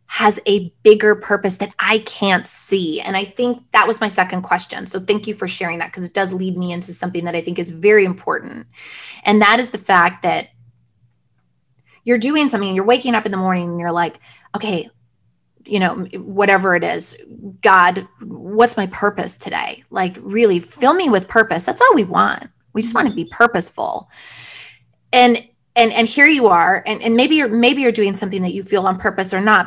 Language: English